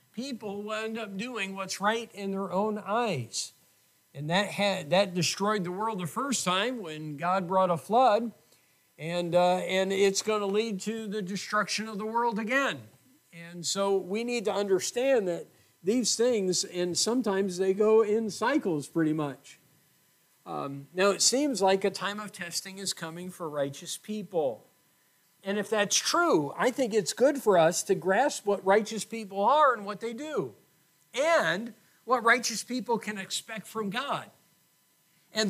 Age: 50-69